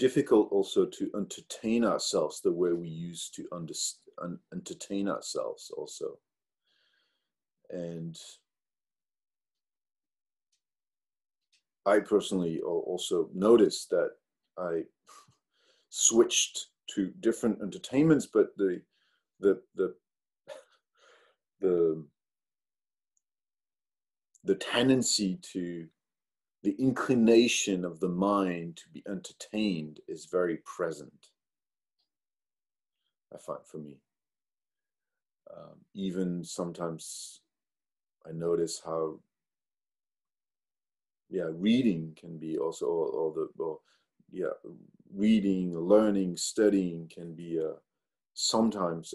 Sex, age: male, 40-59